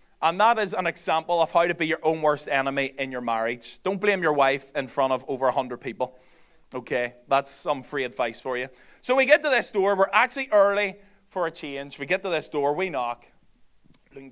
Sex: male